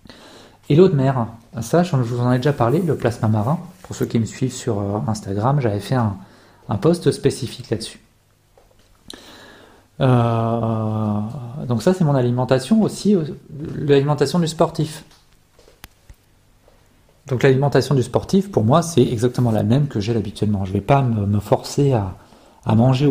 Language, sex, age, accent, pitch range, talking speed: French, male, 40-59, French, 110-140 Hz, 155 wpm